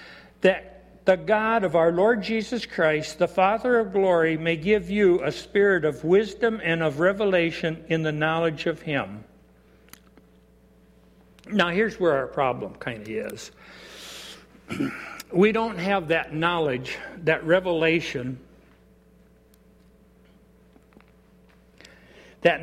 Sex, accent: male, American